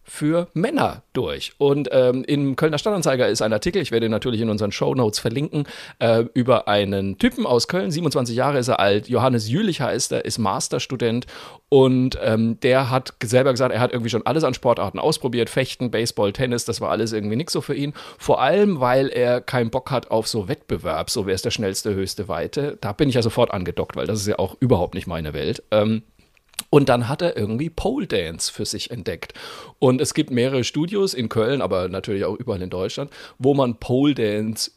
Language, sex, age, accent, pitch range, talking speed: German, male, 40-59, German, 110-140 Hz, 205 wpm